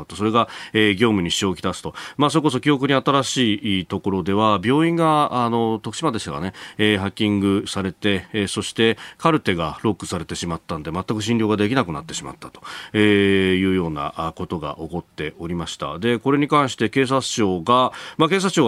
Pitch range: 95-130 Hz